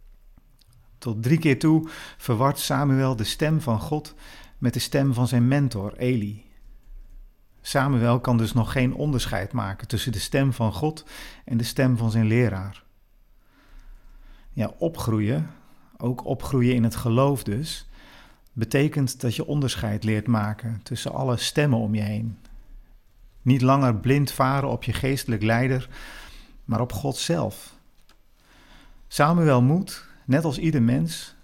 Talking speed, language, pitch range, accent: 140 wpm, Dutch, 110-140 Hz, Dutch